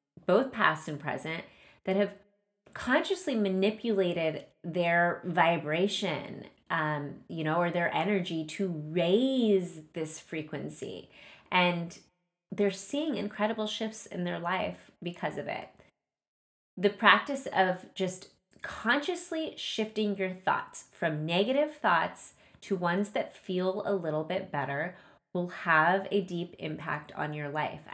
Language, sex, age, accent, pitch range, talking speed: English, female, 30-49, American, 170-215 Hz, 125 wpm